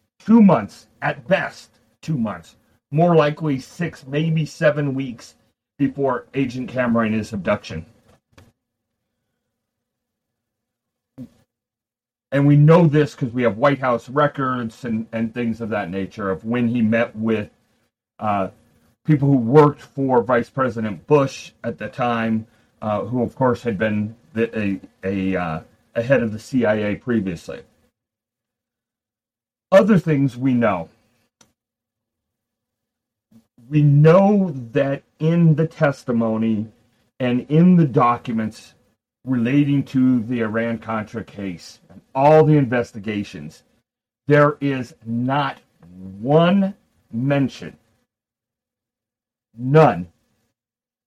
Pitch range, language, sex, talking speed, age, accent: 115-140 Hz, English, male, 110 wpm, 40-59, American